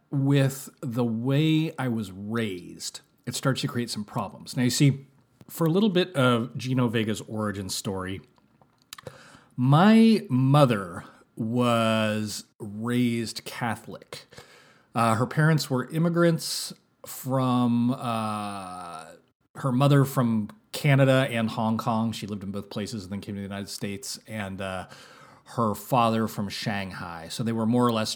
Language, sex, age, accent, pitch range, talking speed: English, male, 30-49, American, 110-140 Hz, 145 wpm